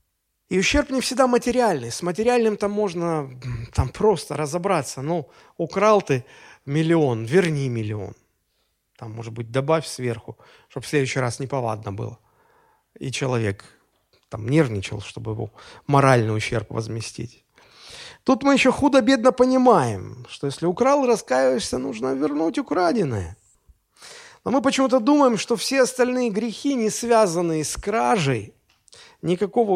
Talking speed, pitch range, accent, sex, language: 125 wpm, 125-215 Hz, native, male, Russian